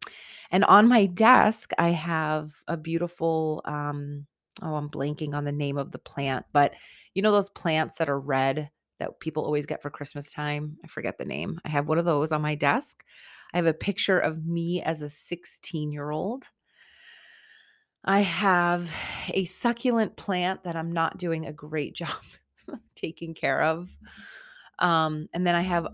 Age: 30-49